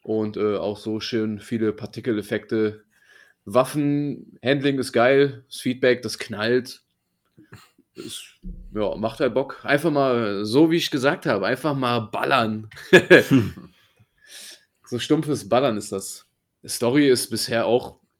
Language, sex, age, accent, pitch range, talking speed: German, male, 30-49, German, 105-125 Hz, 130 wpm